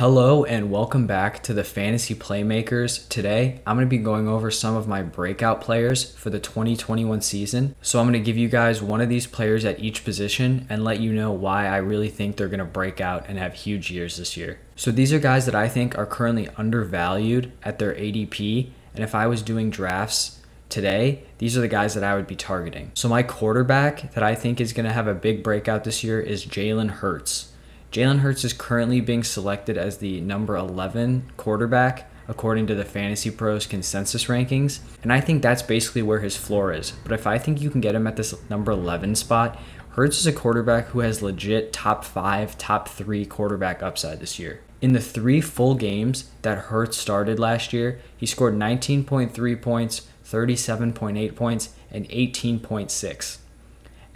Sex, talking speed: male, 190 wpm